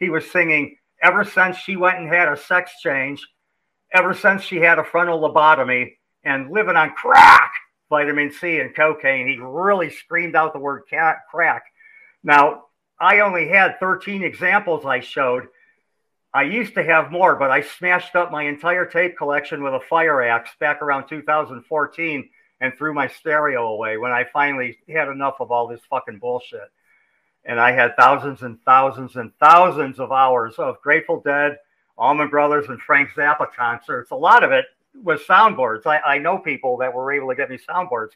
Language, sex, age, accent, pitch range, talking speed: English, male, 50-69, American, 145-185 Hz, 180 wpm